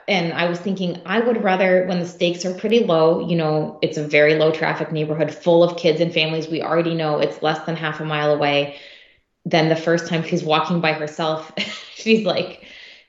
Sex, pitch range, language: female, 165-205 Hz, English